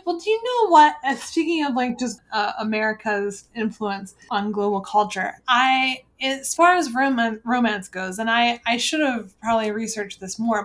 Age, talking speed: 20-39, 175 wpm